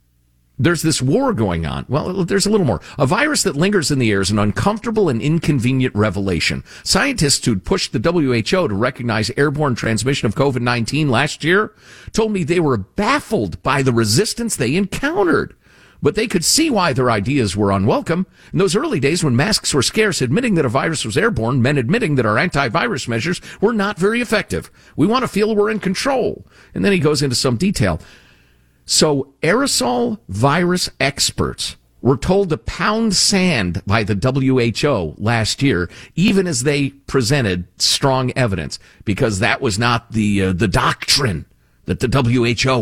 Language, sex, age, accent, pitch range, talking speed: English, male, 50-69, American, 105-175 Hz, 175 wpm